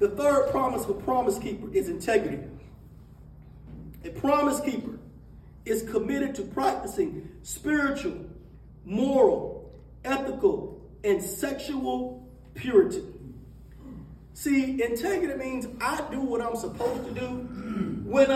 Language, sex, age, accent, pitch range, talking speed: English, male, 40-59, American, 240-310 Hz, 105 wpm